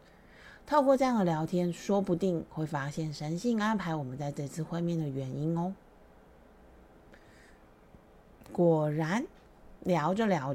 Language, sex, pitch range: Chinese, female, 160-200 Hz